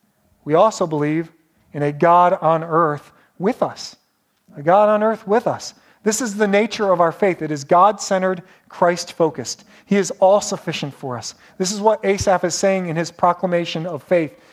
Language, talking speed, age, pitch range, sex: English, 180 wpm, 40-59, 155-195 Hz, male